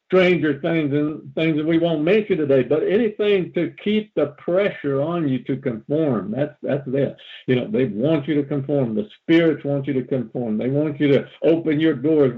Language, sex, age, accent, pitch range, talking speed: English, male, 60-79, American, 130-160 Hz, 205 wpm